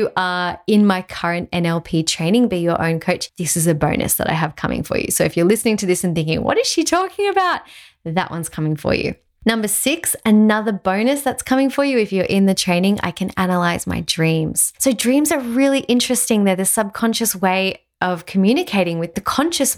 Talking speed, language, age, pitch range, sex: 210 wpm, English, 20-39, 170-225 Hz, female